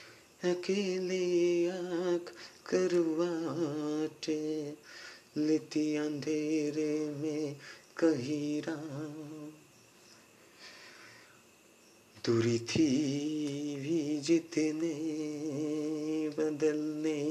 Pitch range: 145-175 Hz